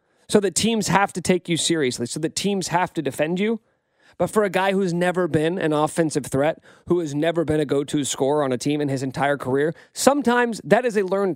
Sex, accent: male, American